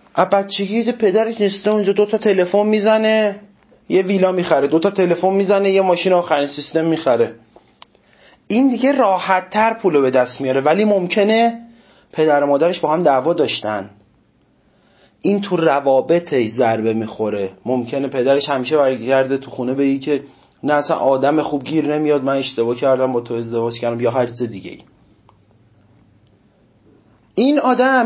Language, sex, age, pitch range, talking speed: Persian, male, 30-49, 135-205 Hz, 150 wpm